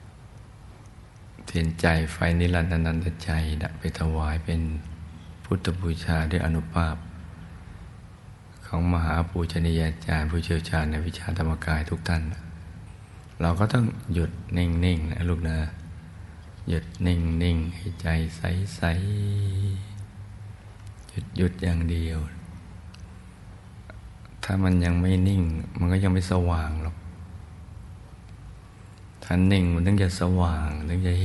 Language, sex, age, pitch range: Thai, male, 60-79, 85-95 Hz